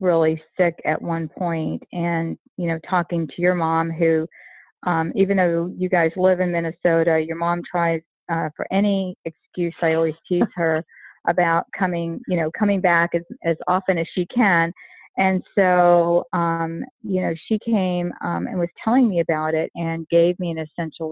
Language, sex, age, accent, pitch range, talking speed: English, female, 40-59, American, 165-185 Hz, 180 wpm